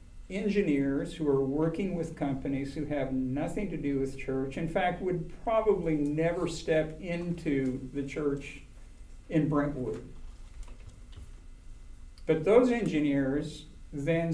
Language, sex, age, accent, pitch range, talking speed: English, male, 50-69, American, 135-160 Hz, 115 wpm